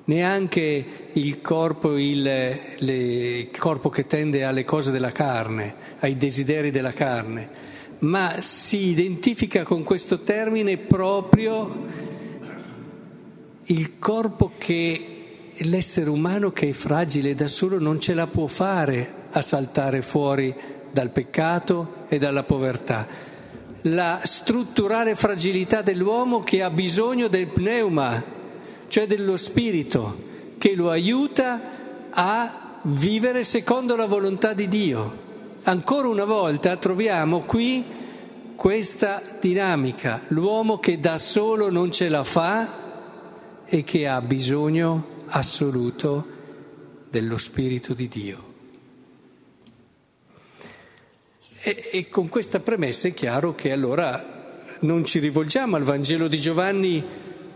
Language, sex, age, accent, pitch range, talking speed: Italian, male, 50-69, native, 145-200 Hz, 110 wpm